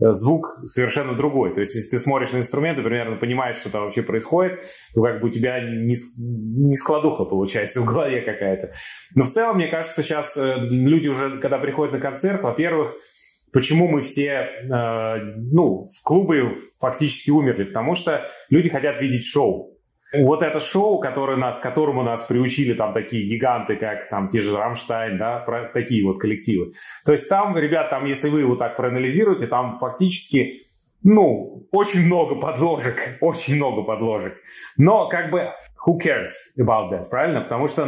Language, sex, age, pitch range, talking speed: Russian, male, 30-49, 120-150 Hz, 165 wpm